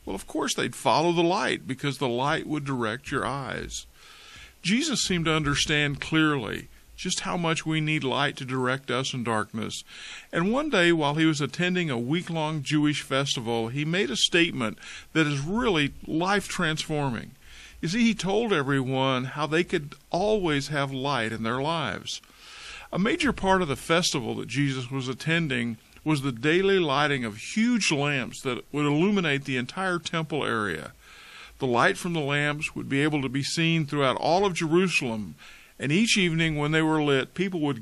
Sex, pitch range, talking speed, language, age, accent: male, 135-175 Hz, 175 wpm, English, 50-69, American